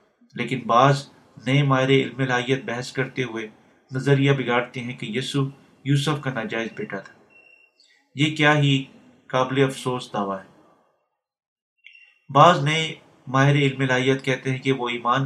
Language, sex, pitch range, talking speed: Urdu, male, 130-145 Hz, 140 wpm